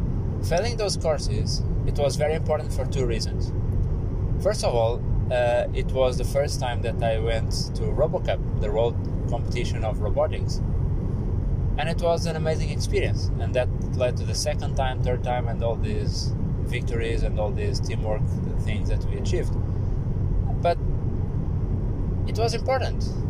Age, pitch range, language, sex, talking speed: 20-39, 95-125 Hz, English, male, 155 wpm